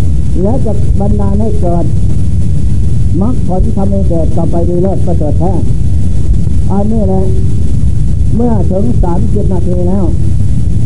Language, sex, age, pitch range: Thai, male, 60-79, 90-105 Hz